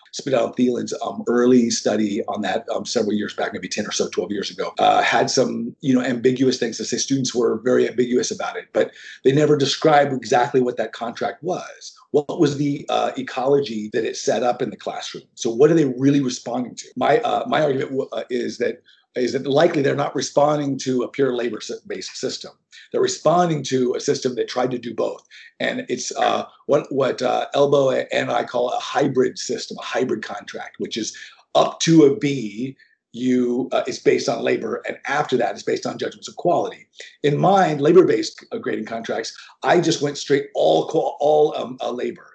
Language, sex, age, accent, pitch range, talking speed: English, male, 50-69, American, 130-190 Hz, 205 wpm